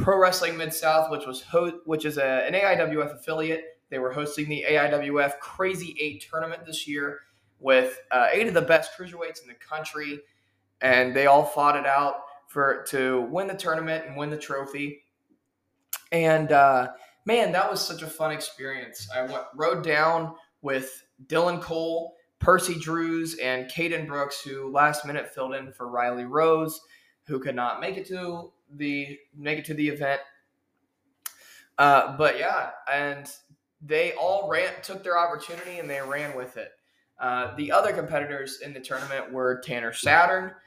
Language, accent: English, American